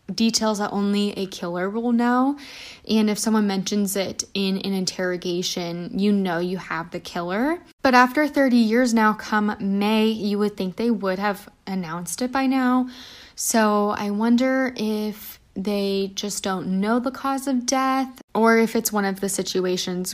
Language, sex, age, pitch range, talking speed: English, female, 10-29, 190-240 Hz, 170 wpm